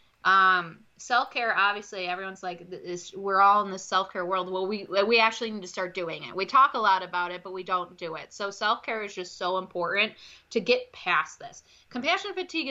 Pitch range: 185-220 Hz